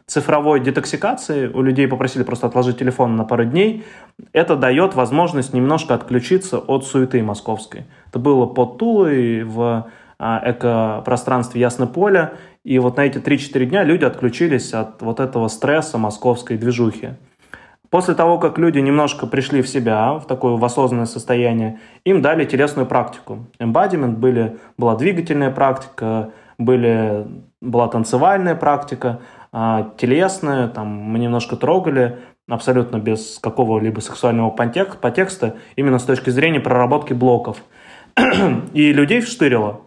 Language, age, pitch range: Russian, 20-39, 120-145 Hz